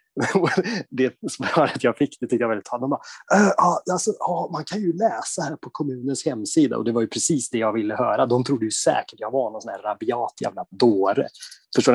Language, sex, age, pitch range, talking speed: Swedish, male, 20-39, 110-155 Hz, 220 wpm